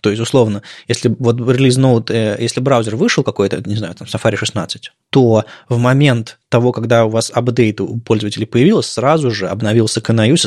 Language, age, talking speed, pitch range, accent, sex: Russian, 20-39, 170 wpm, 105-130 Hz, native, male